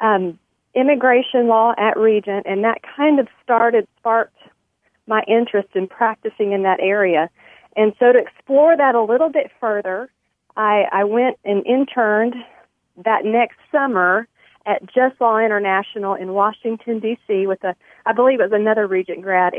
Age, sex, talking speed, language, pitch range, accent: 40-59, female, 155 wpm, English, 190-230 Hz, American